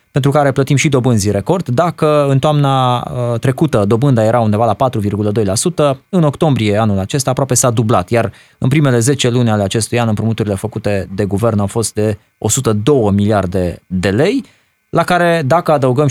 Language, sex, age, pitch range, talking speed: Romanian, male, 20-39, 105-140 Hz, 170 wpm